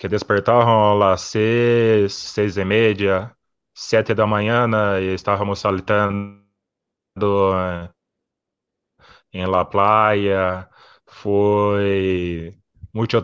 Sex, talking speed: male, 80 wpm